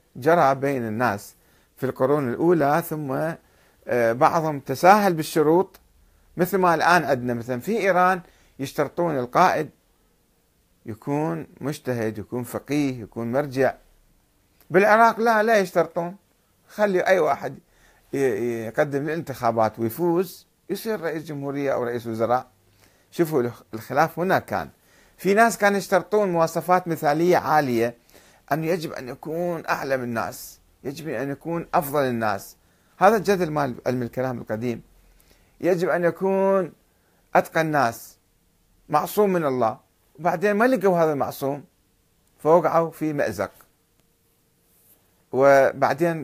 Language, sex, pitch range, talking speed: Arabic, male, 120-175 Hz, 110 wpm